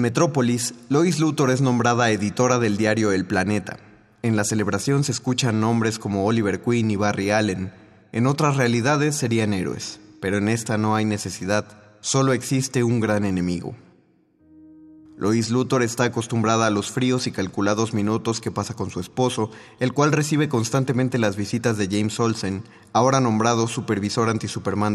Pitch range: 105-125 Hz